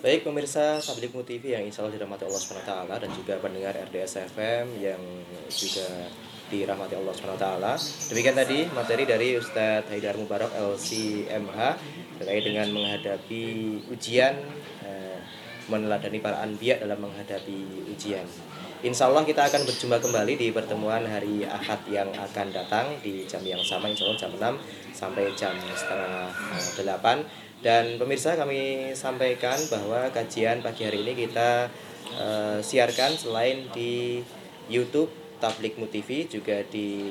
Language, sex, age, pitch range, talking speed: Indonesian, male, 20-39, 100-125 Hz, 130 wpm